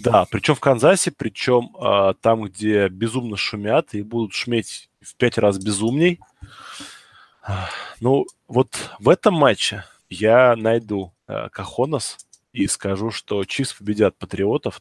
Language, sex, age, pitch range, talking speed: Russian, male, 20-39, 105-130 Hz, 135 wpm